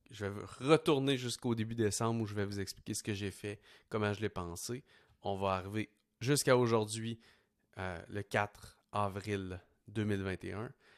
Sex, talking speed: male, 160 wpm